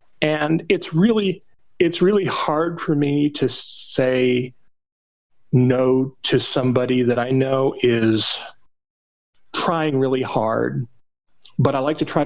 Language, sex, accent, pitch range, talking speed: English, male, American, 115-145 Hz, 120 wpm